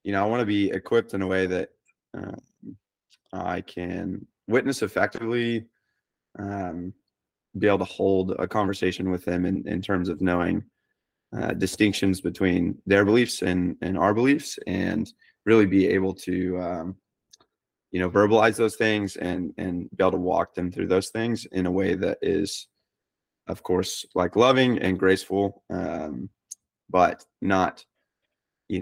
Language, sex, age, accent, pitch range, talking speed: English, male, 20-39, American, 90-100 Hz, 155 wpm